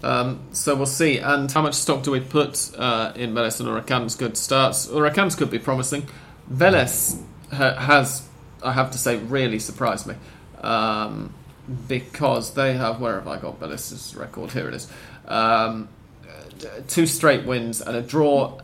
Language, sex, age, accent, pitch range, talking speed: English, male, 30-49, British, 115-140 Hz, 165 wpm